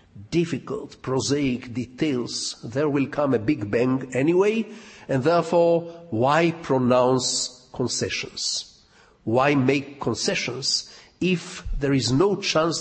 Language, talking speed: English, 110 wpm